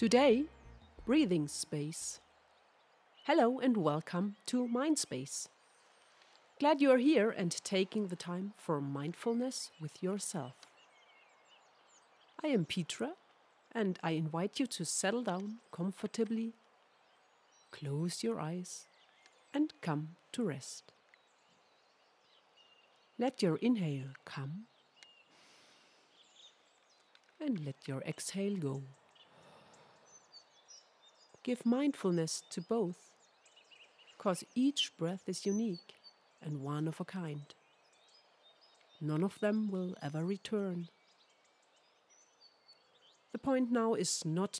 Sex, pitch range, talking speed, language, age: female, 160-225 Hz, 95 wpm, English, 40-59